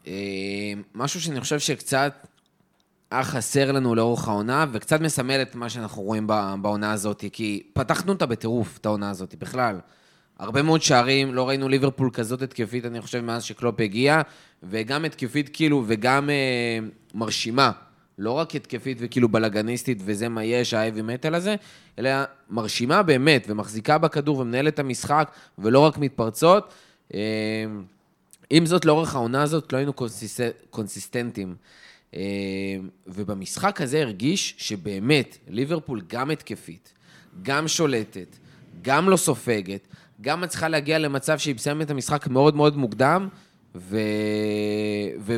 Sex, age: male, 20-39